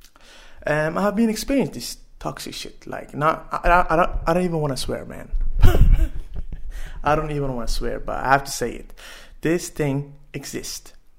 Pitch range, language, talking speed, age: 125-185 Hz, English, 175 wpm, 20-39